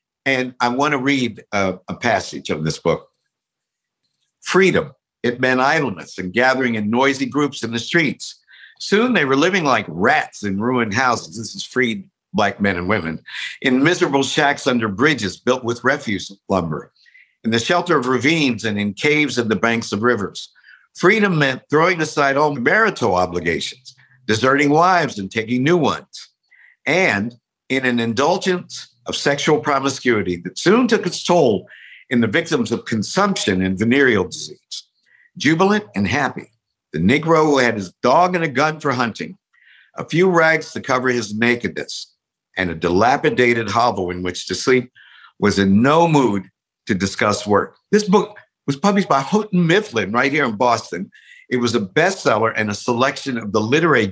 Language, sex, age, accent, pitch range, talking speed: English, male, 60-79, American, 110-150 Hz, 165 wpm